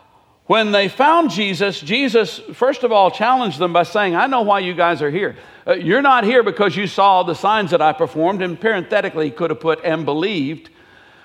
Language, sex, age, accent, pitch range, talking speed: English, male, 60-79, American, 175-245 Hz, 210 wpm